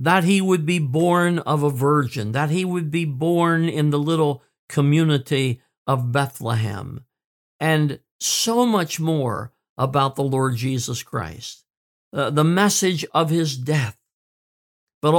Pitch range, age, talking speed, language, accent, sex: 130-165 Hz, 50-69, 140 wpm, English, American, male